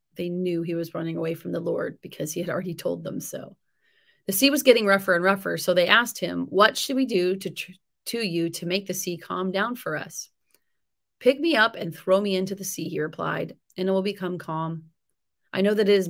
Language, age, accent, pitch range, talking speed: English, 30-49, American, 170-220 Hz, 240 wpm